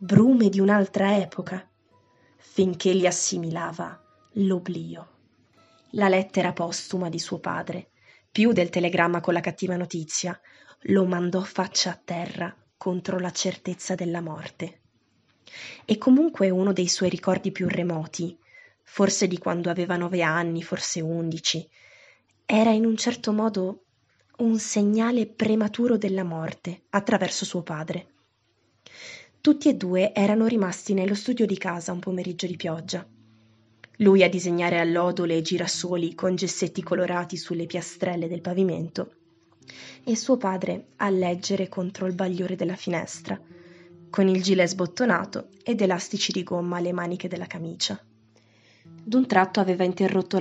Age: 20-39